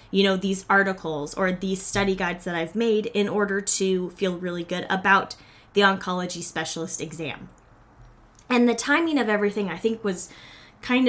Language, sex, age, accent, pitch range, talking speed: English, female, 10-29, American, 180-225 Hz, 170 wpm